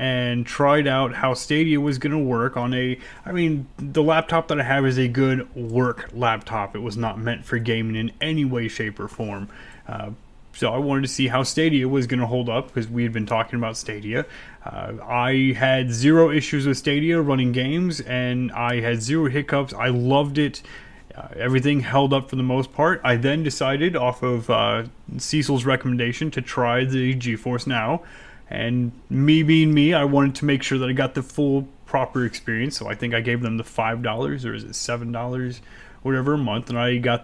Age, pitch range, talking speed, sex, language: 30-49, 115-135 Hz, 205 wpm, male, English